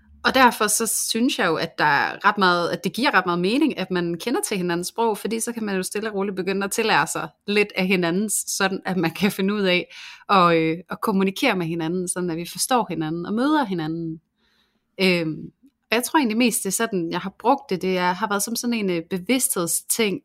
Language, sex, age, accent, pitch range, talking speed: Danish, female, 30-49, native, 175-220 Hz, 235 wpm